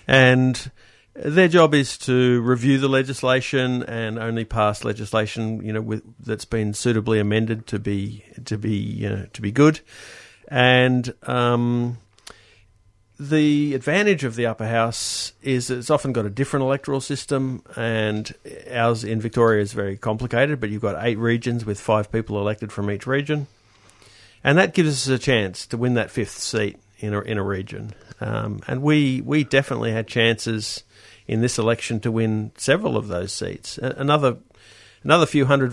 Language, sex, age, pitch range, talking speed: English, male, 50-69, 105-130 Hz, 165 wpm